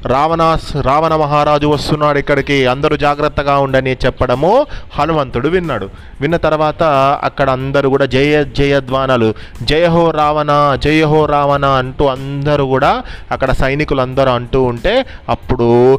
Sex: male